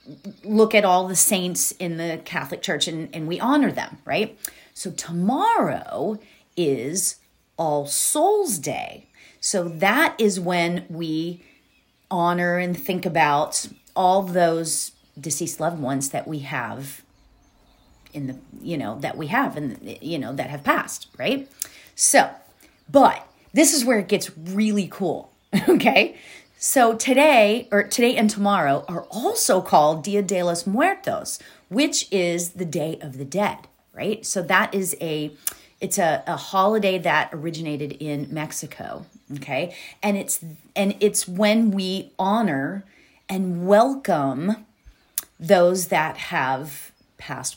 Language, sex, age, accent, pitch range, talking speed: English, female, 40-59, American, 160-210 Hz, 135 wpm